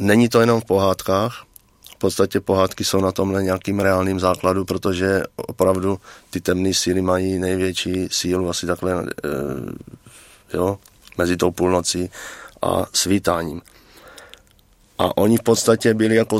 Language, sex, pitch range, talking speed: Czech, male, 90-110 Hz, 135 wpm